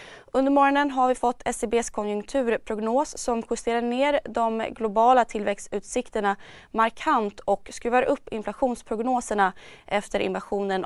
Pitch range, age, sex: 200-245 Hz, 20-39, female